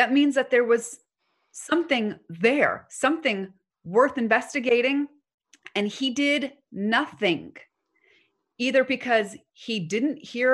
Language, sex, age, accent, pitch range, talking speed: English, female, 30-49, American, 205-280 Hz, 110 wpm